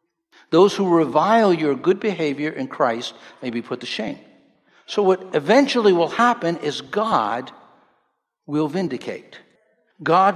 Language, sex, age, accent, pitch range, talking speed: English, male, 60-79, American, 160-230 Hz, 135 wpm